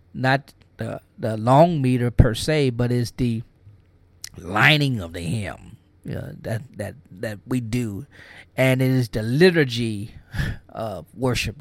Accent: American